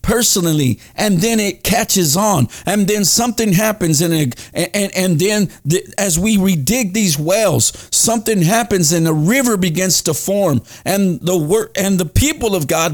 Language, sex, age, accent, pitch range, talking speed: English, male, 50-69, American, 170-225 Hz, 165 wpm